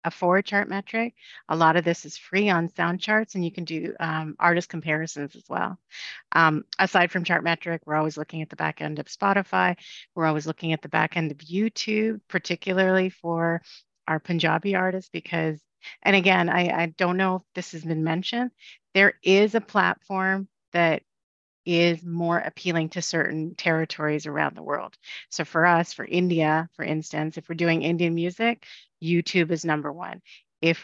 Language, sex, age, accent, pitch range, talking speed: English, female, 40-59, American, 160-195 Hz, 180 wpm